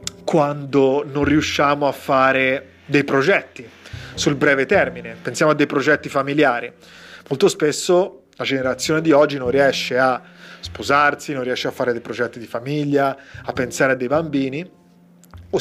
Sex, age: male, 30-49